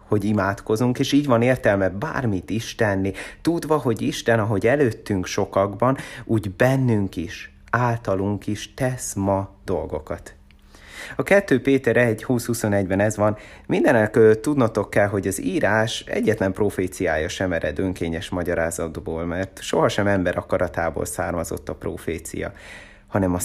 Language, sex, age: Hungarian, male, 30-49